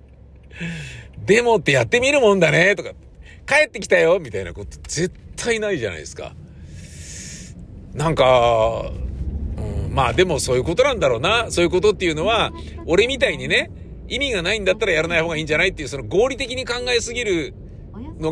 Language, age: Japanese, 50-69